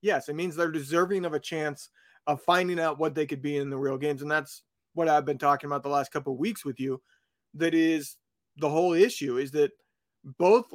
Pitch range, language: 145-170 Hz, English